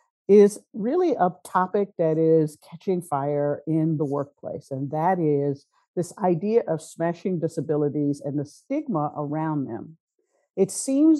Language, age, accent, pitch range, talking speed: English, 50-69, American, 145-190 Hz, 140 wpm